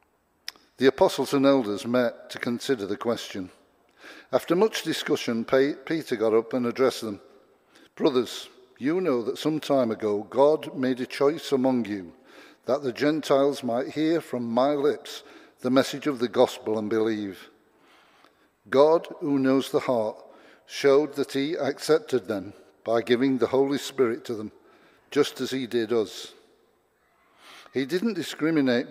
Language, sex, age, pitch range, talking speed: English, male, 60-79, 115-150 Hz, 145 wpm